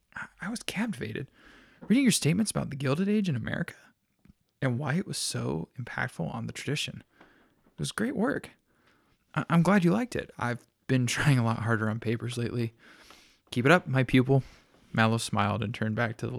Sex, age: male, 20-39